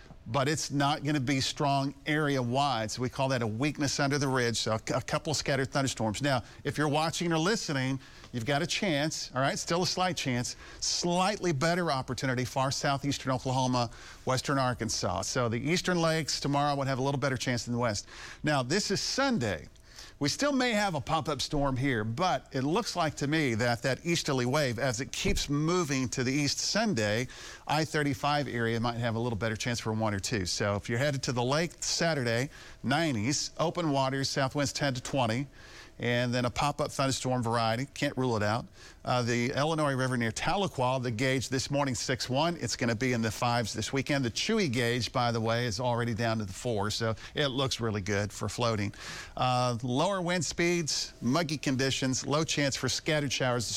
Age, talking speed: 50-69, 200 wpm